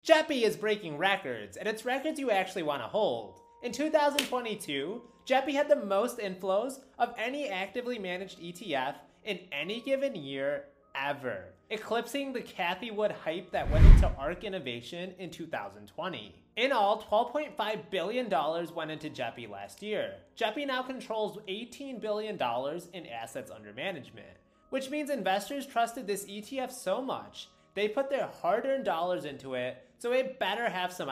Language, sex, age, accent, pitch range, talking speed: English, male, 30-49, American, 165-245 Hz, 150 wpm